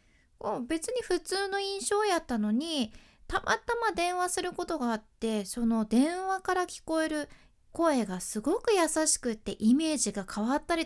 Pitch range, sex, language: 205-320 Hz, female, Japanese